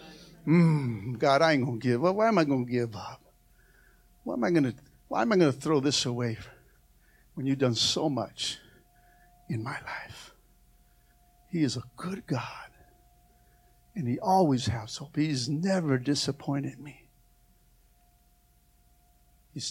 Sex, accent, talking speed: male, American, 140 wpm